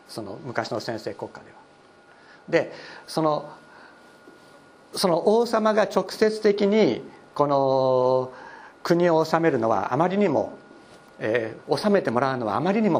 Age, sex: 60-79, male